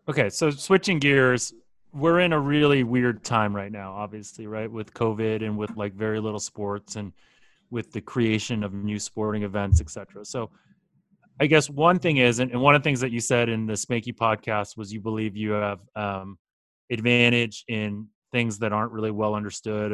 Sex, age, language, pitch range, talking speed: male, 30-49, English, 105-125 Hz, 195 wpm